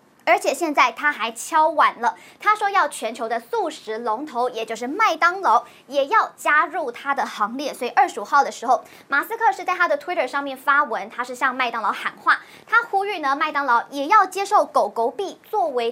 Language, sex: Chinese, male